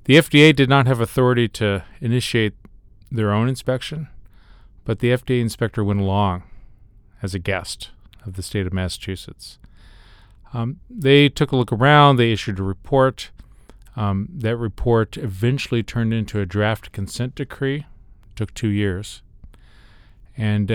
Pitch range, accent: 100-125 Hz, American